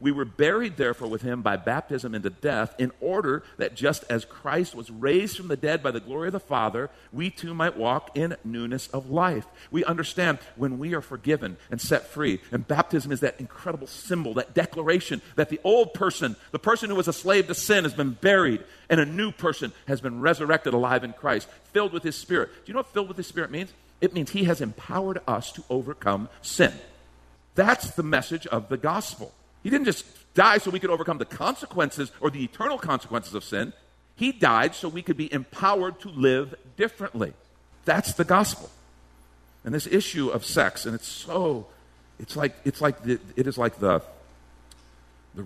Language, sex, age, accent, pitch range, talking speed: English, male, 50-69, American, 105-165 Hz, 195 wpm